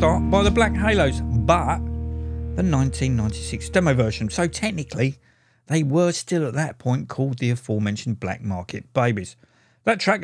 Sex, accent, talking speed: male, British, 145 wpm